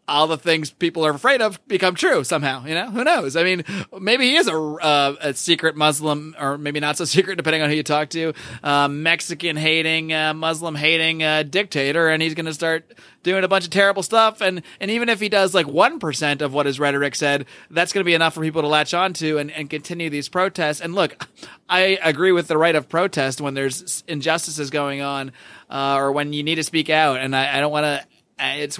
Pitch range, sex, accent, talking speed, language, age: 150-180 Hz, male, American, 230 wpm, English, 30-49